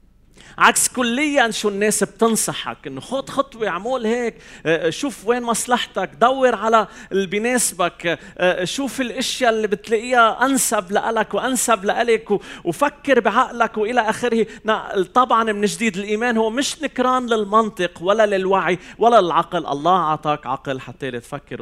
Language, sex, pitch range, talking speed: Arabic, male, 140-220 Hz, 130 wpm